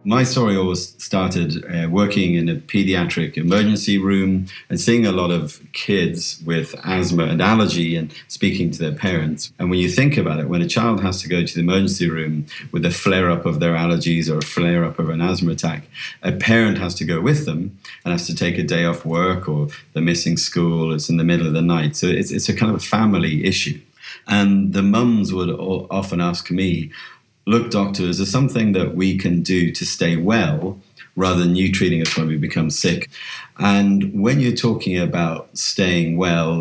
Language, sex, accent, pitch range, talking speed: English, male, British, 85-100 Hz, 205 wpm